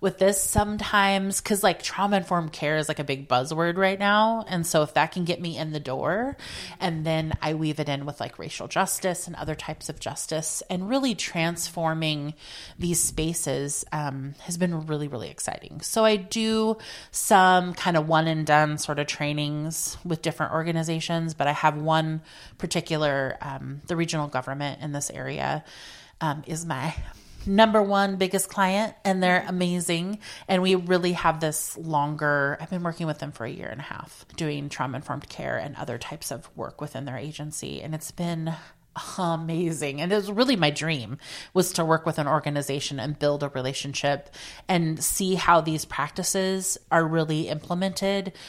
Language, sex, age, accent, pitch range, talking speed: English, female, 30-49, American, 150-180 Hz, 180 wpm